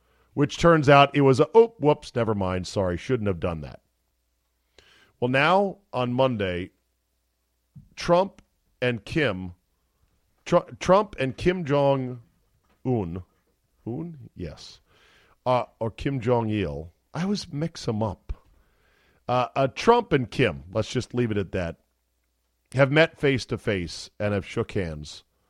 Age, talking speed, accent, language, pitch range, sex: 40-59, 130 wpm, American, English, 95-150 Hz, male